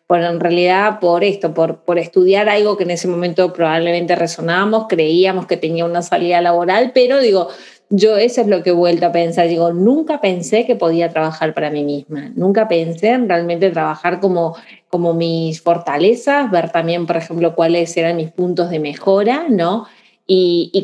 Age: 20-39